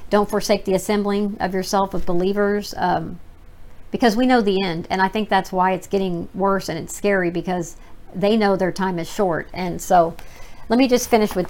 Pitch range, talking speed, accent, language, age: 180-205 Hz, 205 wpm, American, English, 50-69